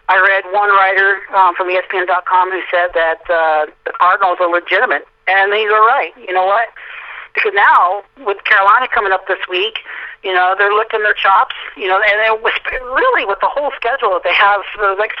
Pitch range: 180-220 Hz